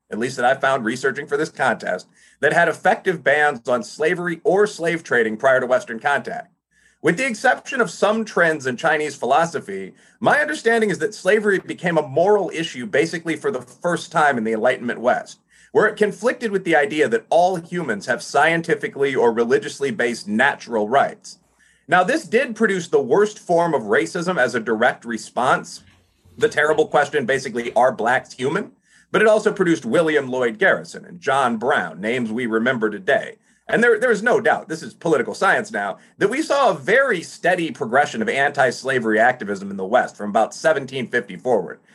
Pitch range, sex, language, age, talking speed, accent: 140-215 Hz, male, English, 30-49, 180 wpm, American